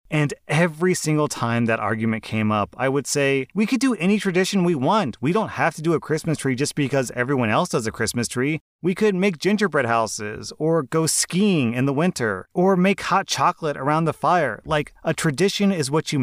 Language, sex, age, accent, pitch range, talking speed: English, male, 30-49, American, 120-180 Hz, 215 wpm